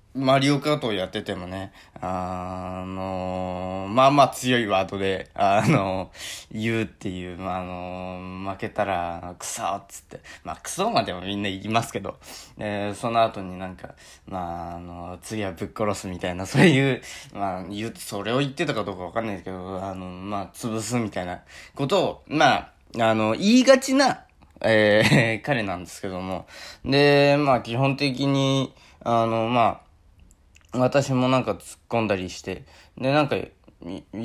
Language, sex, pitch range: Japanese, male, 95-130 Hz